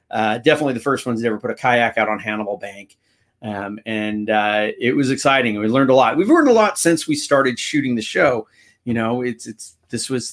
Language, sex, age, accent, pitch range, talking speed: English, male, 40-59, American, 110-145 Hz, 230 wpm